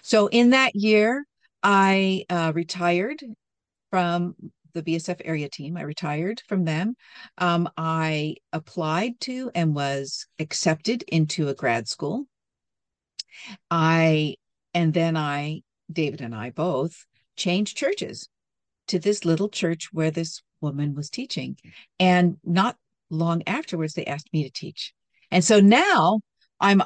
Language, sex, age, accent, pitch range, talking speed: English, female, 50-69, American, 160-205 Hz, 130 wpm